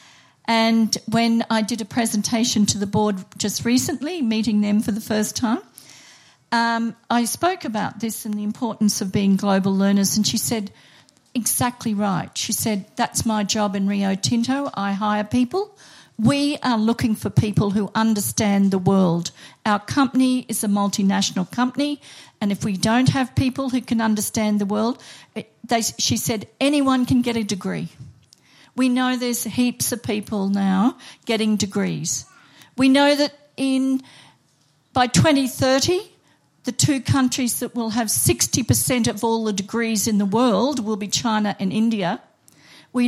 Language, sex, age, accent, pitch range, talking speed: English, female, 50-69, Australian, 205-250 Hz, 155 wpm